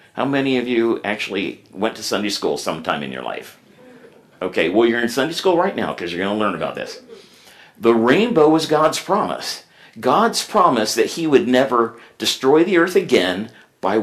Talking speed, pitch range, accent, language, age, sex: 190 wpm, 115-170 Hz, American, English, 50-69, male